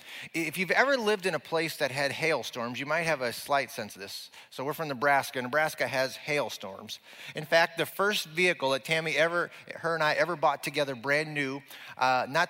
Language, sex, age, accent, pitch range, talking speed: English, male, 30-49, American, 120-165 Hz, 205 wpm